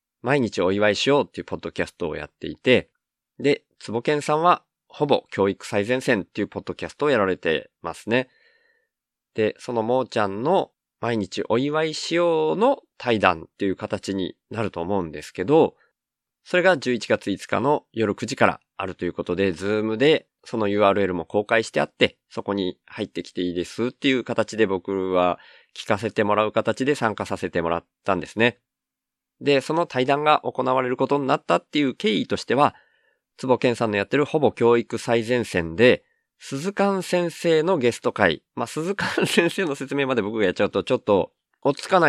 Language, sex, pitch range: Japanese, male, 100-140 Hz